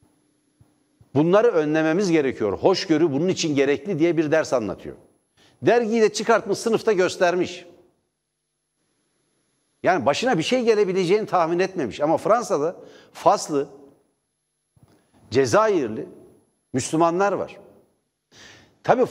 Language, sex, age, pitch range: Turkish, male, 60-79, 150-215 Hz